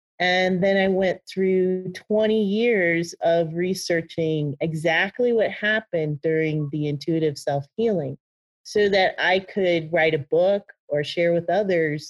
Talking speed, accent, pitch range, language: 135 wpm, American, 155-190 Hz, English